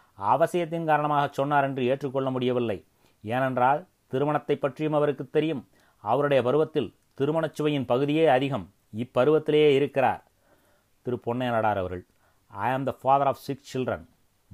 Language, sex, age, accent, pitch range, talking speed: Tamil, male, 30-49, native, 120-145 Hz, 120 wpm